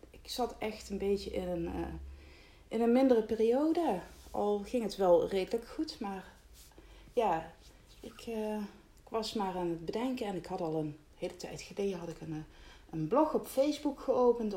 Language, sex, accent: Dutch, female, Dutch